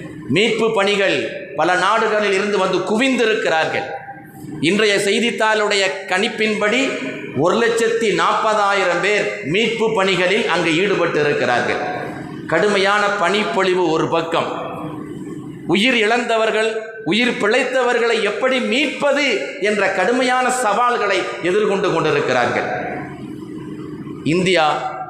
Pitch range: 160-220 Hz